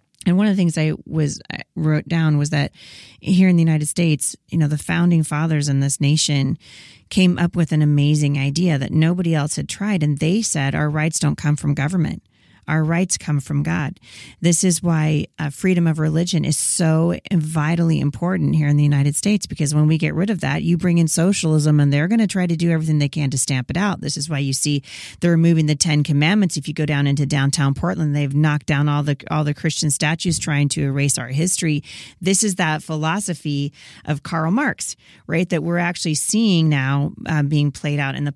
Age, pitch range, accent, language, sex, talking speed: 40-59, 145-170 Hz, American, English, female, 220 wpm